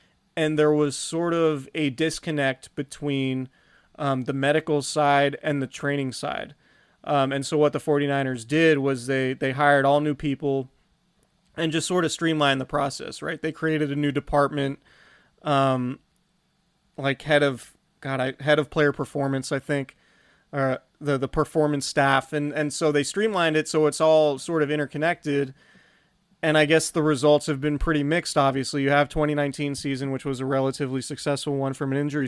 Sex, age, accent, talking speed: male, 30-49, American, 175 wpm